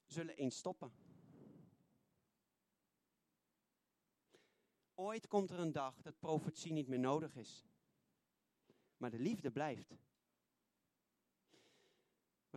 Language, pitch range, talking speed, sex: Dutch, 135-205 Hz, 90 wpm, male